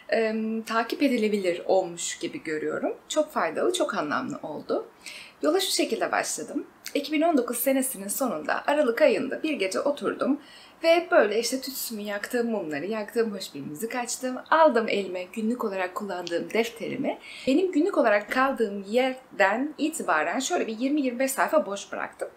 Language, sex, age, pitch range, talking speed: Turkish, female, 30-49, 225-305 Hz, 135 wpm